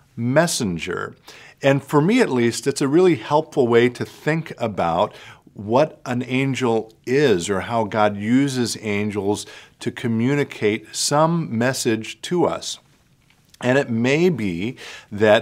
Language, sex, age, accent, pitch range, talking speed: English, male, 50-69, American, 105-135 Hz, 130 wpm